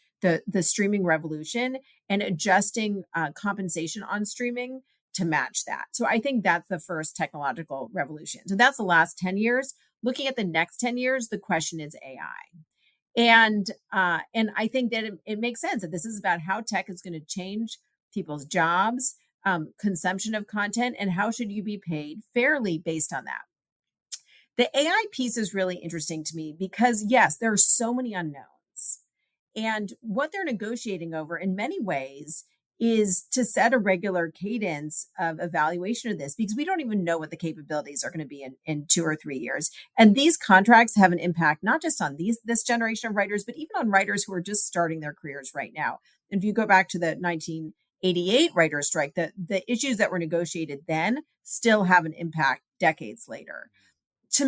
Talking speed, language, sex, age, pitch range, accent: 190 wpm, English, female, 40-59, 165-230 Hz, American